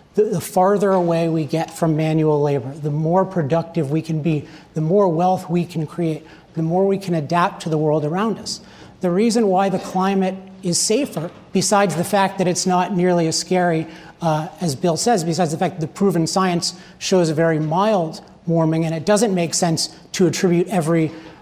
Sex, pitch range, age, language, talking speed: male, 160-190 Hz, 30-49, English, 195 wpm